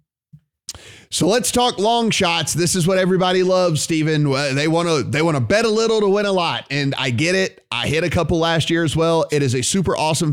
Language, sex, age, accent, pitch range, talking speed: English, male, 30-49, American, 135-170 Hz, 220 wpm